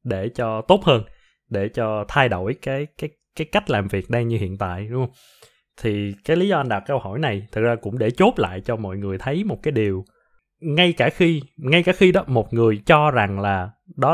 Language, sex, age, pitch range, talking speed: Vietnamese, male, 20-39, 105-155 Hz, 235 wpm